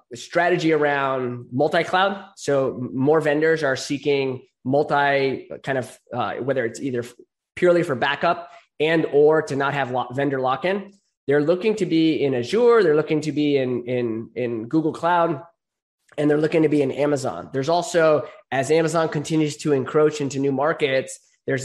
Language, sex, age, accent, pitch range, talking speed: English, male, 20-39, American, 130-155 Hz, 160 wpm